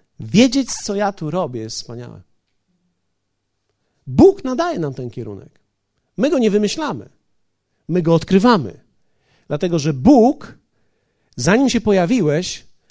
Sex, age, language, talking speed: male, 50-69, Polish, 115 wpm